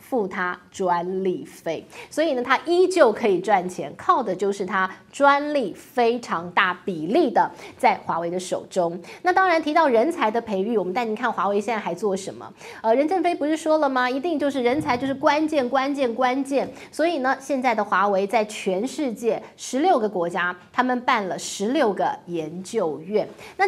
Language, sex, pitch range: Chinese, female, 190-285 Hz